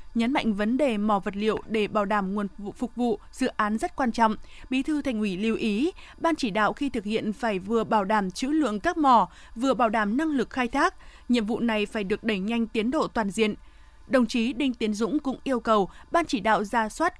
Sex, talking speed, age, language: female, 240 wpm, 20-39, Vietnamese